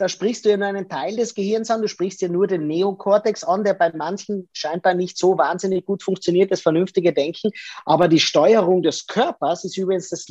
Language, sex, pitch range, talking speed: German, male, 165-205 Hz, 215 wpm